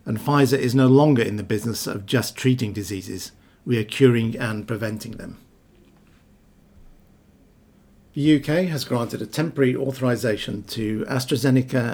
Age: 50-69